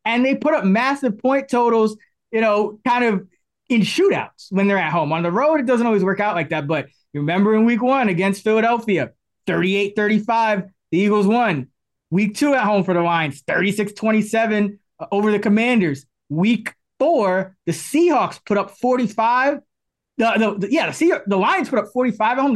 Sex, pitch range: male, 175-225 Hz